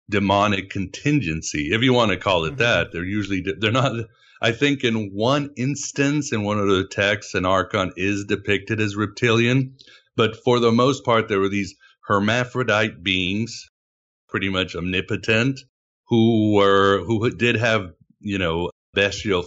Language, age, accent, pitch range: English, 50-69, American, 90-110 Hz